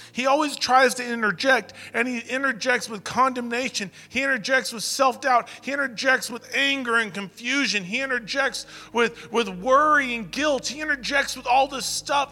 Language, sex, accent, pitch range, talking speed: English, male, American, 200-275 Hz, 160 wpm